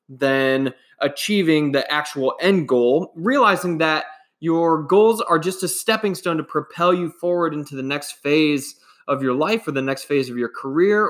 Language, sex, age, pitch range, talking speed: English, male, 20-39, 140-175 Hz, 180 wpm